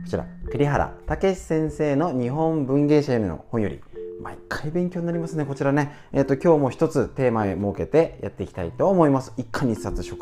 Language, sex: Japanese, male